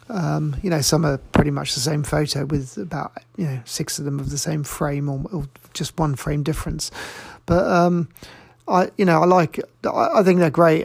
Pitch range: 145-165 Hz